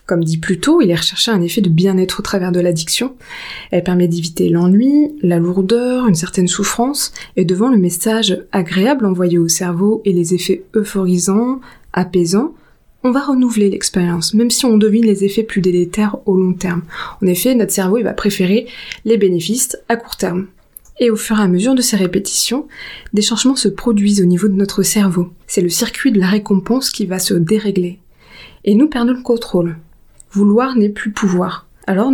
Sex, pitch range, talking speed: female, 185-230 Hz, 190 wpm